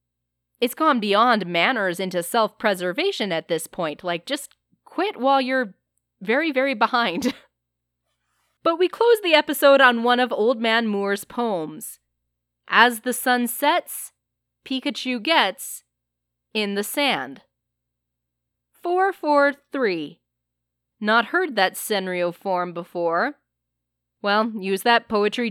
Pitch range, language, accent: 175-250 Hz, English, American